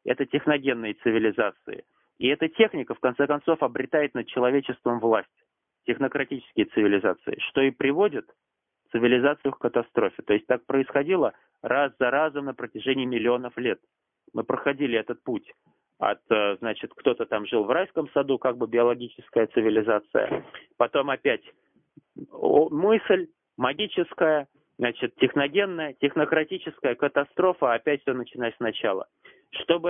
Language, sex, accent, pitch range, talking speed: Russian, male, native, 125-165 Hz, 120 wpm